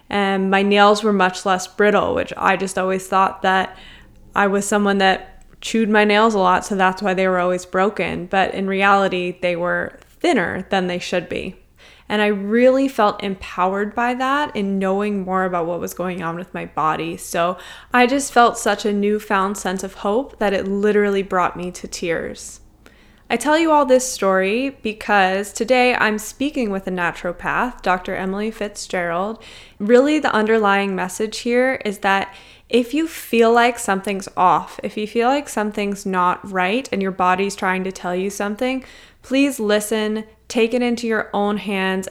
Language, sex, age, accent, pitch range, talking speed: English, female, 20-39, American, 185-220 Hz, 180 wpm